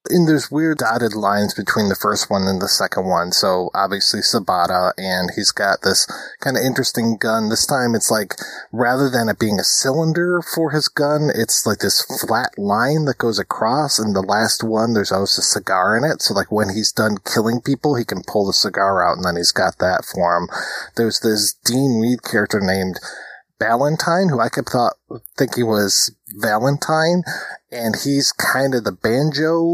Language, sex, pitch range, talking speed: English, male, 105-155 Hz, 190 wpm